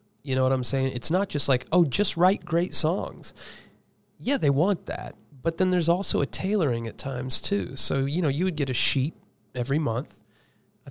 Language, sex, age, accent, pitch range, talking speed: English, male, 30-49, American, 125-150 Hz, 210 wpm